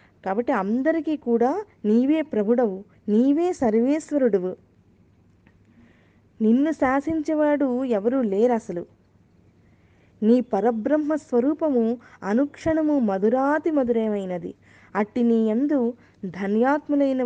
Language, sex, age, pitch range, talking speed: Telugu, female, 20-39, 225-295 Hz, 75 wpm